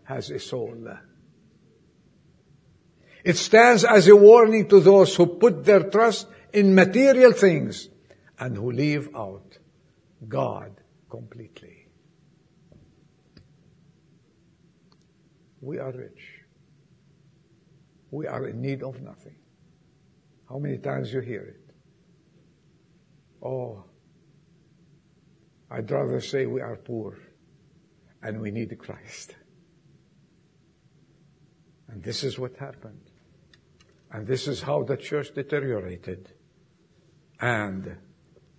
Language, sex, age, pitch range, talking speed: English, male, 60-79, 130-175 Hz, 95 wpm